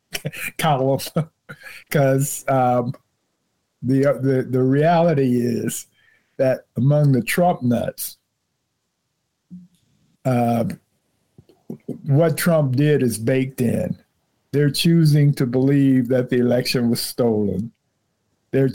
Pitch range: 120-140 Hz